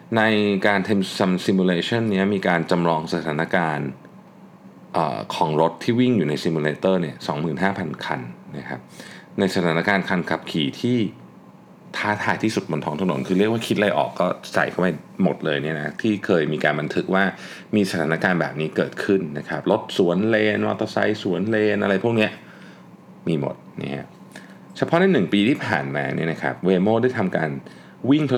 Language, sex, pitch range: Thai, male, 85-120 Hz